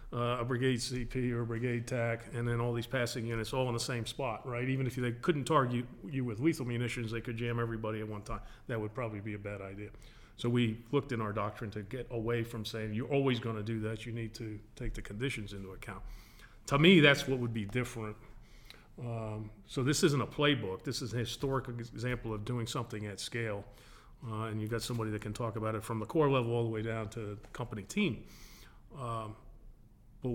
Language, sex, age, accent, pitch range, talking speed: English, male, 40-59, American, 110-125 Hz, 225 wpm